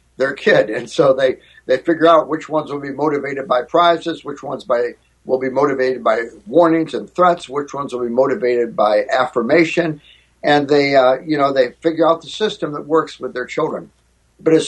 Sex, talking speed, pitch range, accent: male, 200 wpm, 130-175 Hz, American